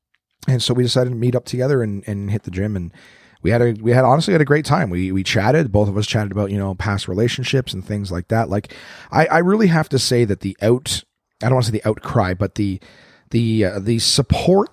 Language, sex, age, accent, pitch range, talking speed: English, male, 30-49, American, 100-135 Hz, 255 wpm